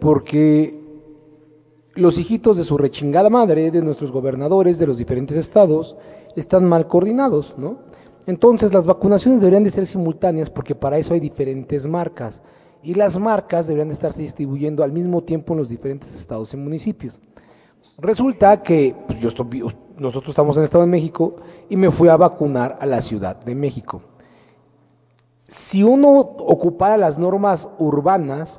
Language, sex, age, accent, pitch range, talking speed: Spanish, male, 40-59, Mexican, 140-190 Hz, 155 wpm